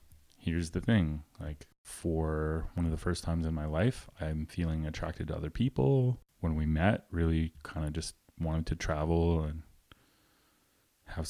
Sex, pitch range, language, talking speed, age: male, 75-100 Hz, English, 165 wpm, 20-39